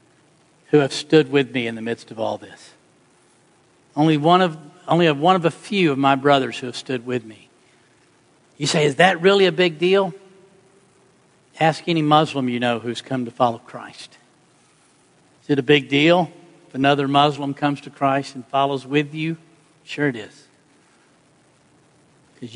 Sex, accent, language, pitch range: male, American, English, 140-170 Hz